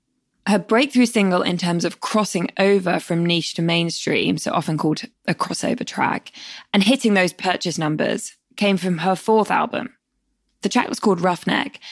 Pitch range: 165-210 Hz